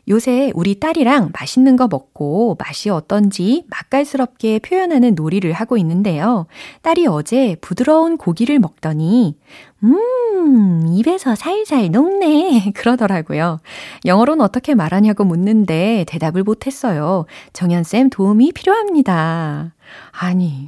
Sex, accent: female, native